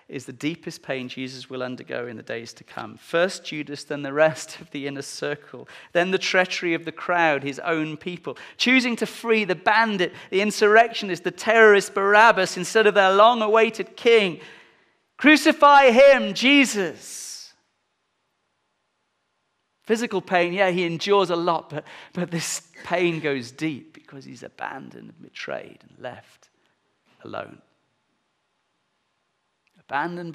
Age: 40-59